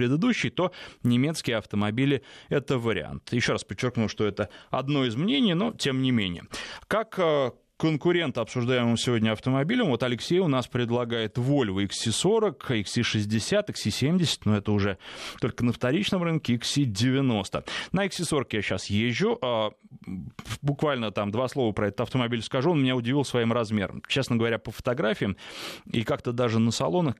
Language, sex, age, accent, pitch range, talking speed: Russian, male, 20-39, native, 110-140 Hz, 150 wpm